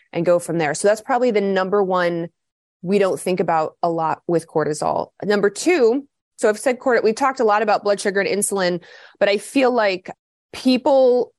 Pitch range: 175-220 Hz